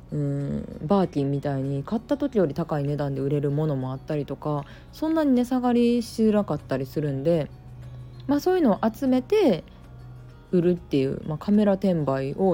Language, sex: Japanese, female